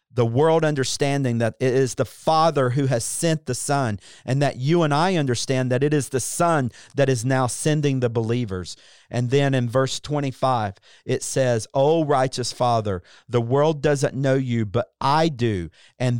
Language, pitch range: English, 120-150 Hz